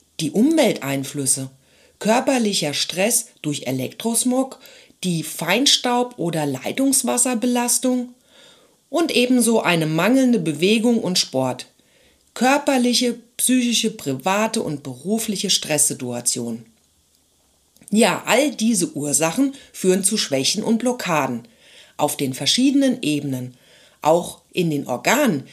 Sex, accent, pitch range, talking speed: female, German, 145-235 Hz, 95 wpm